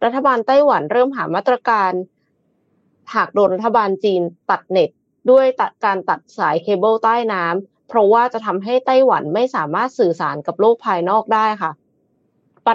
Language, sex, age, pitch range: Thai, female, 20-39, 185-245 Hz